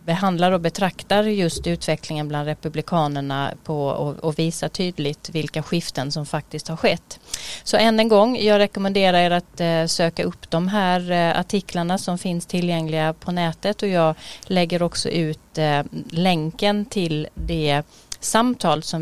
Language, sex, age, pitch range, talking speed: Swedish, female, 30-49, 155-185 Hz, 155 wpm